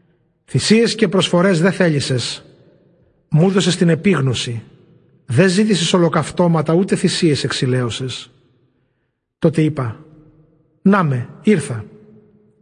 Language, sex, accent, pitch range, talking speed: Greek, male, native, 145-185 Hz, 85 wpm